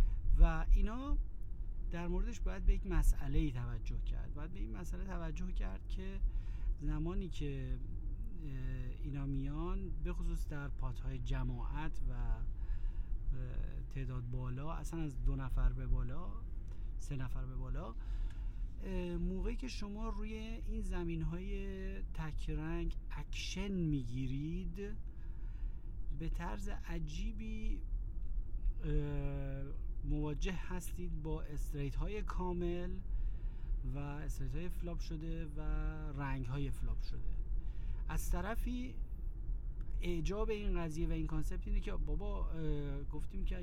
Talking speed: 110 wpm